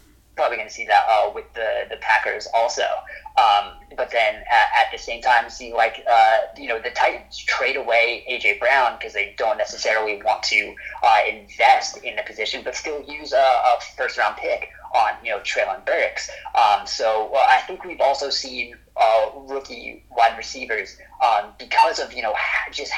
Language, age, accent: English, 30-49, American